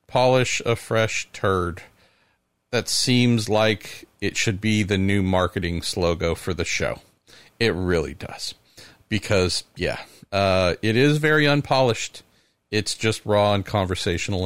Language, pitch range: English, 105-145 Hz